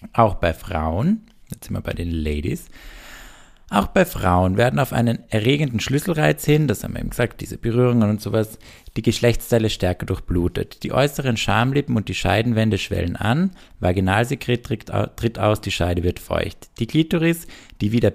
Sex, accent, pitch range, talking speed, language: male, German, 95-120 Hz, 170 wpm, German